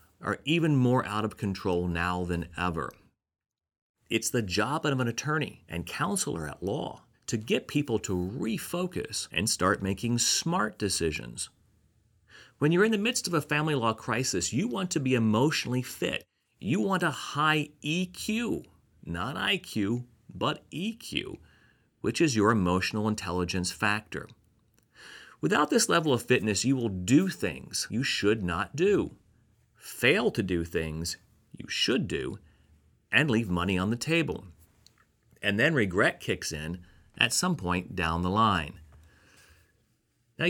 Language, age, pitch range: English, 40-59, 90-145 Hz